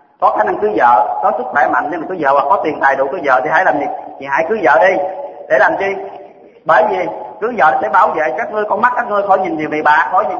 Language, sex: Vietnamese, male